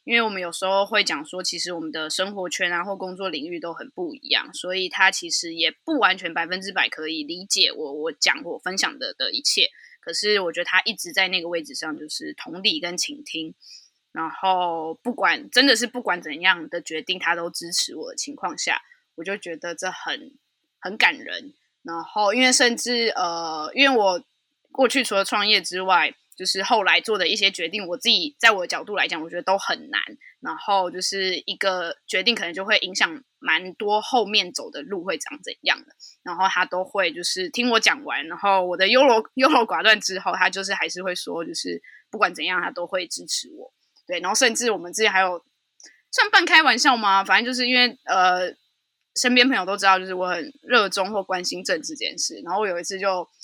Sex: female